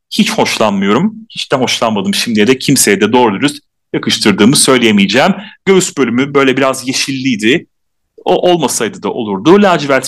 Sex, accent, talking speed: male, native, 135 wpm